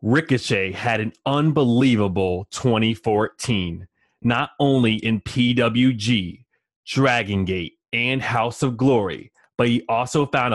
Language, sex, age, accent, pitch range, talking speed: English, male, 30-49, American, 105-125 Hz, 110 wpm